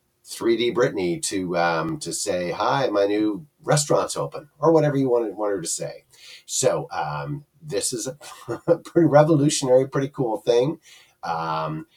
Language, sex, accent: English, male, American